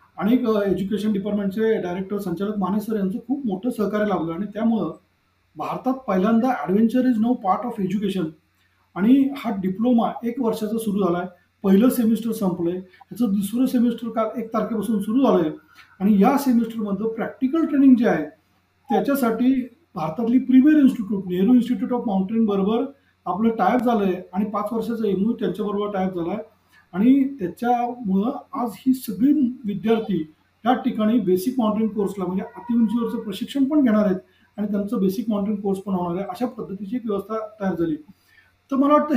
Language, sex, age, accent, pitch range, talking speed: Marathi, male, 40-59, native, 200-250 Hz, 155 wpm